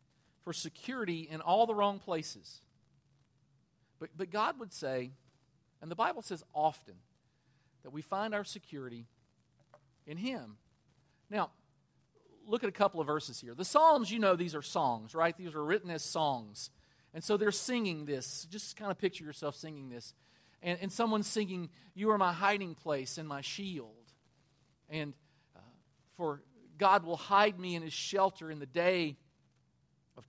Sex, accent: male, American